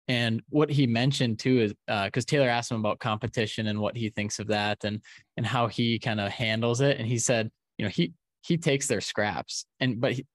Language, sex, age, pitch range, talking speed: English, male, 20-39, 110-135 Hz, 225 wpm